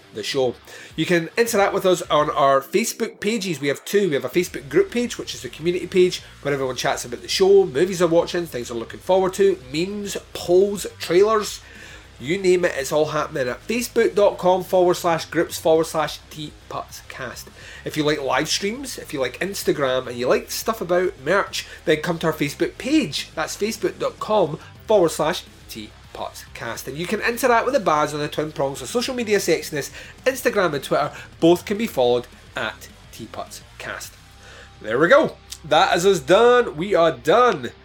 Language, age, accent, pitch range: English, 30-49, British, 145-200 Hz